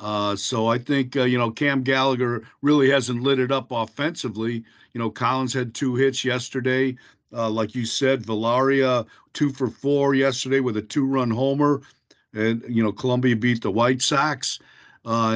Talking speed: 170 wpm